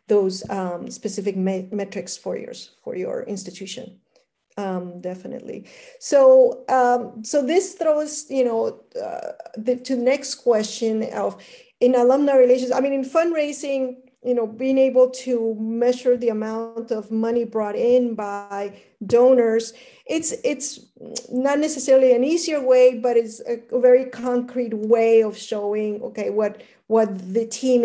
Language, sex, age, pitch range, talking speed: English, female, 40-59, 210-255 Hz, 145 wpm